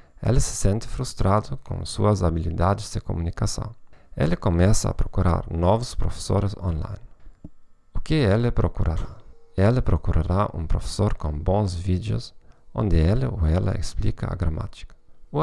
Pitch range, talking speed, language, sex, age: 85-110 Hz, 135 wpm, Portuguese, male, 40-59